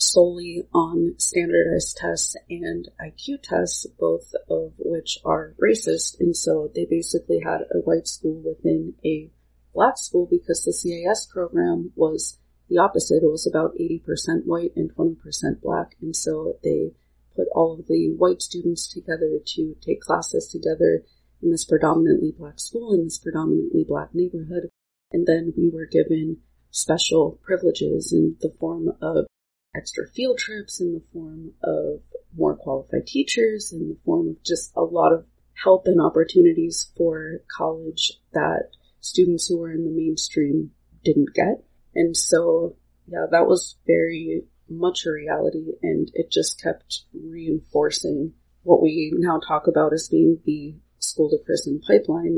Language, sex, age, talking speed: English, female, 30-49, 150 wpm